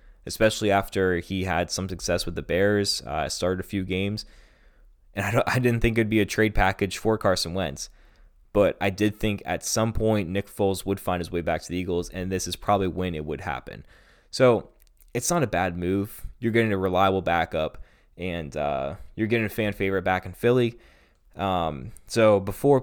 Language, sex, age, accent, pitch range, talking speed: English, male, 20-39, American, 90-110 Hz, 200 wpm